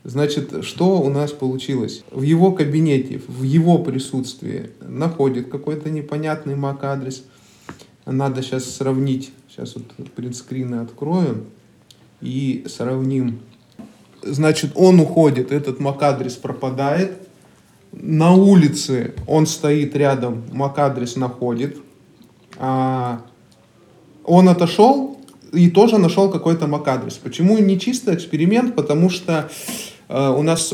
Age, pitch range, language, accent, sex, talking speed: 20-39, 130-155 Hz, Russian, native, male, 100 wpm